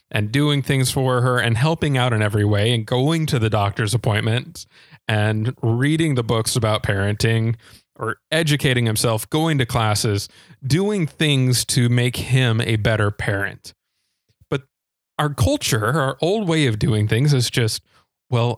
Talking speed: 160 wpm